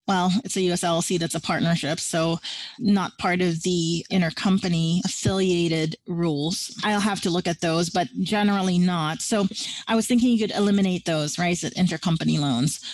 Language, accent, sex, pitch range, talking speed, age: English, American, female, 175-225 Hz, 165 wpm, 30-49